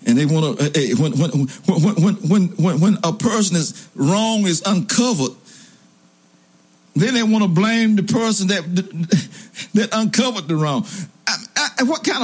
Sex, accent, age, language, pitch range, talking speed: male, American, 60-79, English, 130-220 Hz, 155 wpm